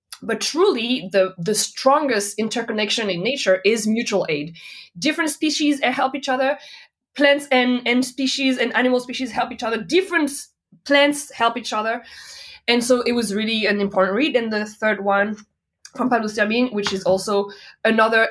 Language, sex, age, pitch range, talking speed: English, female, 20-39, 200-255 Hz, 160 wpm